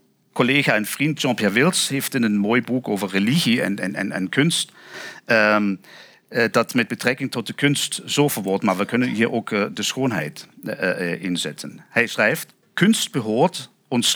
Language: Dutch